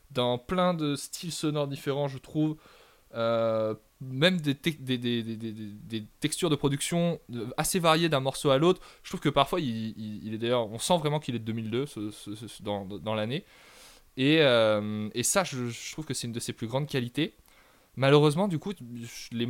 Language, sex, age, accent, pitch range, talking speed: French, male, 20-39, French, 115-150 Hz, 205 wpm